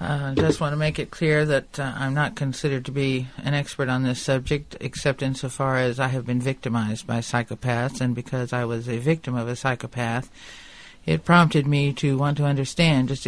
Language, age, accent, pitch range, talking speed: English, 50-69, American, 125-145 Hz, 205 wpm